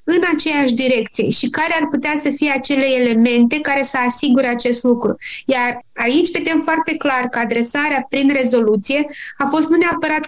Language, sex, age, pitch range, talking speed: Romanian, female, 20-39, 245-290 Hz, 170 wpm